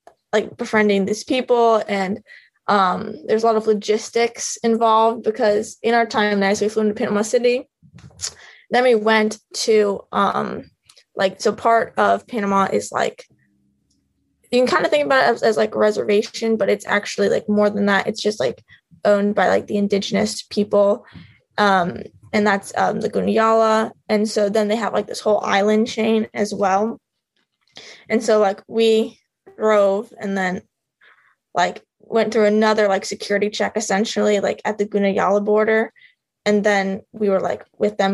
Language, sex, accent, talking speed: English, female, American, 170 wpm